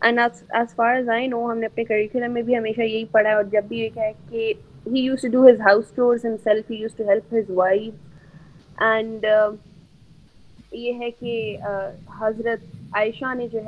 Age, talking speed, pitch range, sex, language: 20-39, 100 wpm, 210-280 Hz, female, Urdu